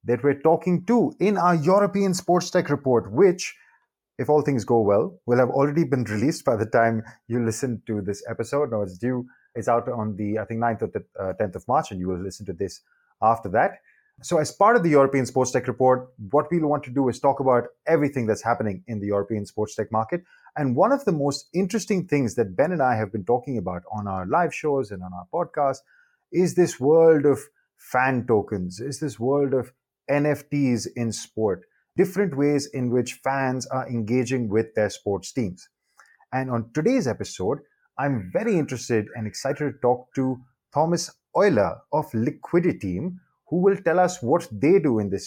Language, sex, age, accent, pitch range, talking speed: English, male, 30-49, Indian, 115-155 Hz, 200 wpm